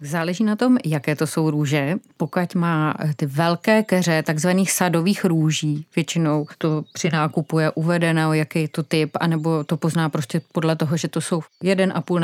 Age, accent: 30-49, native